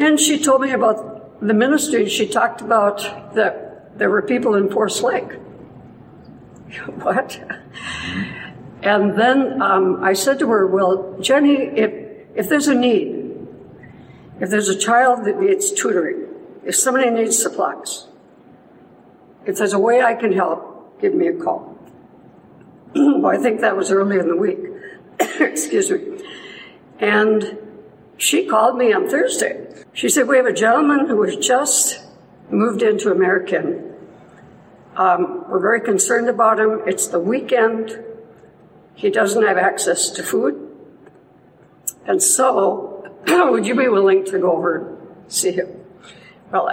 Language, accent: English, American